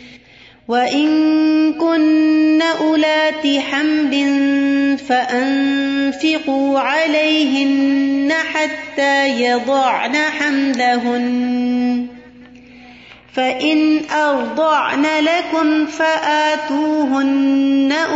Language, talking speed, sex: Urdu, 45 wpm, female